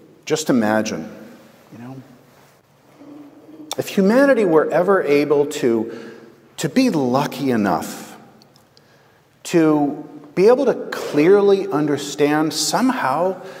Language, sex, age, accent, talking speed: English, male, 50-69, American, 95 wpm